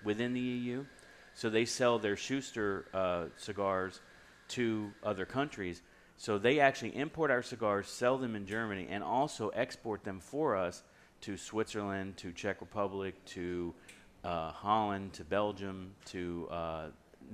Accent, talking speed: American, 140 wpm